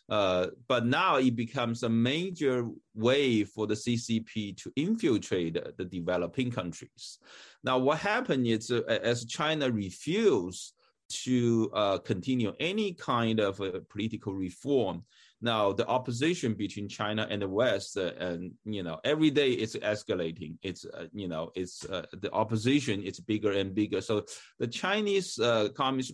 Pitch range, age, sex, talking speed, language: 100-125 Hz, 30-49, male, 150 wpm, English